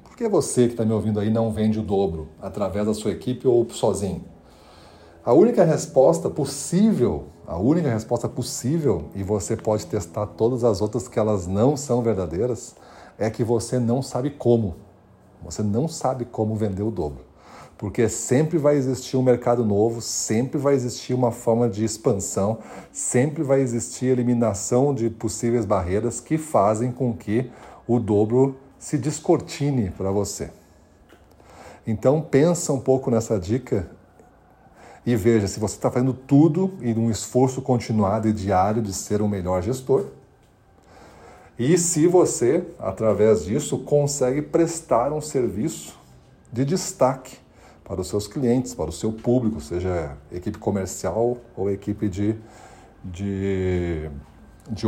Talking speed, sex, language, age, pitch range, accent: 145 wpm, male, Portuguese, 40-59, 100-125 Hz, Brazilian